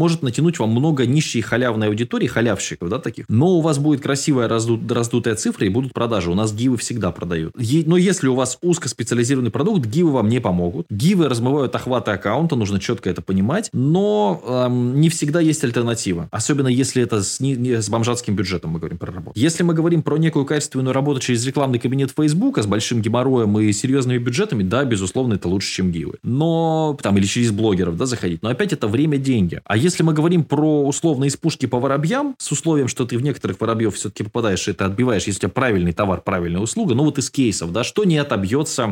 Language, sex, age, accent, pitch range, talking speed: Russian, male, 20-39, native, 105-150 Hz, 205 wpm